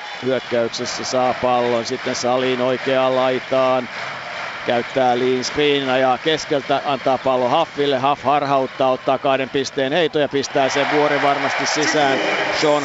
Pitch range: 130-150 Hz